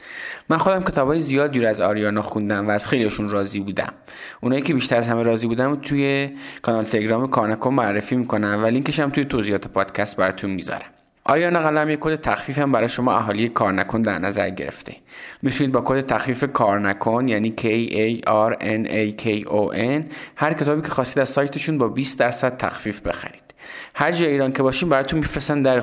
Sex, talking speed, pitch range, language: male, 180 wpm, 105-140 Hz, Persian